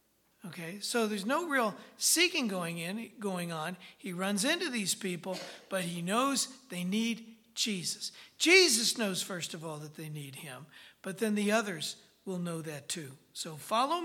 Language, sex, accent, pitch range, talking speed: English, male, American, 180-245 Hz, 170 wpm